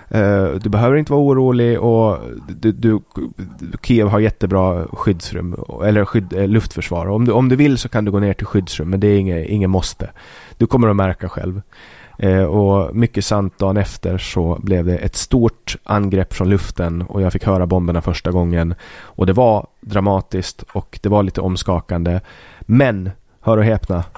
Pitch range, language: 90-105 Hz, Swedish